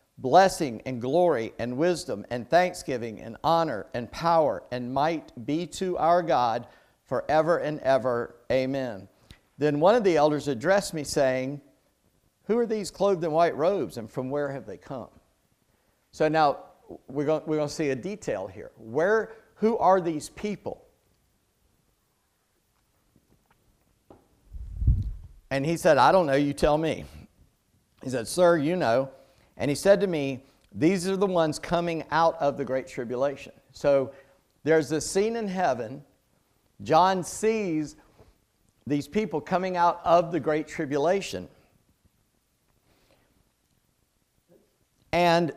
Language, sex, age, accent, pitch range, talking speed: English, male, 50-69, American, 130-175 Hz, 135 wpm